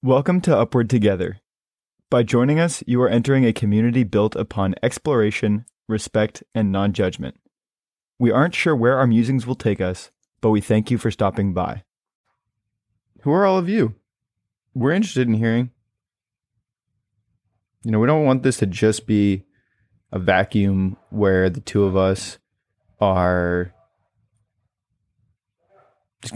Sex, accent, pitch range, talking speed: male, American, 100-115 Hz, 140 wpm